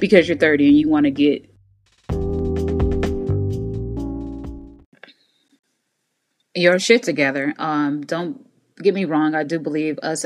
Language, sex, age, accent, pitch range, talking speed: English, female, 20-39, American, 140-180 Hz, 115 wpm